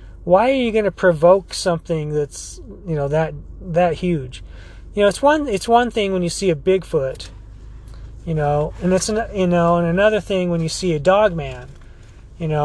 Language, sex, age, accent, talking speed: English, male, 30-49, American, 205 wpm